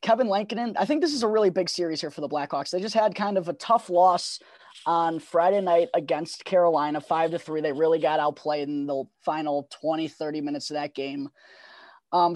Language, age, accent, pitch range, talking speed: English, 20-39, American, 155-200 Hz, 215 wpm